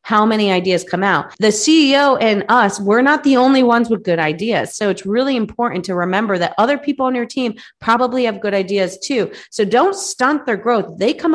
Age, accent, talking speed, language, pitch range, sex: 30-49, American, 215 wpm, English, 190-245 Hz, female